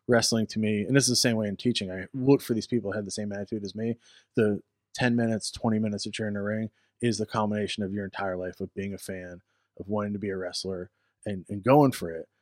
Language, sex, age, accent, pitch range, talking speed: English, male, 20-39, American, 100-120 Hz, 260 wpm